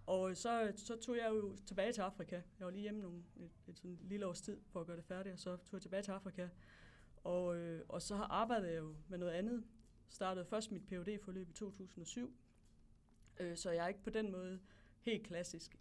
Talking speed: 215 wpm